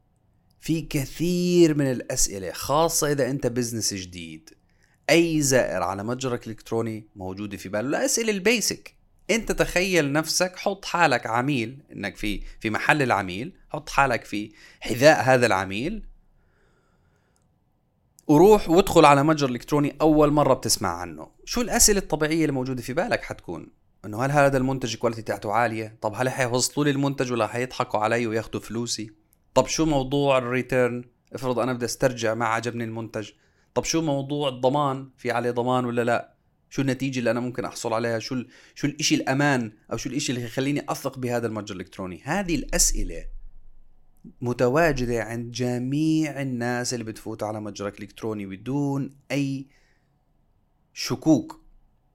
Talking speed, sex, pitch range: 140 wpm, male, 110-145 Hz